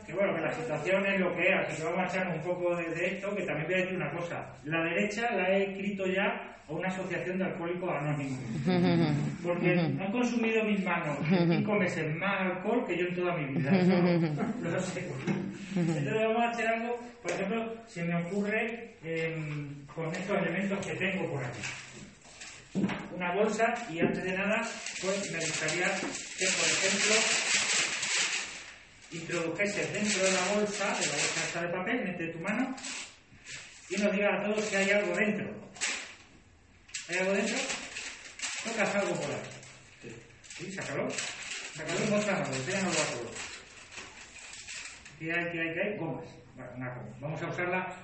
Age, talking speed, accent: 30-49, 170 wpm, Spanish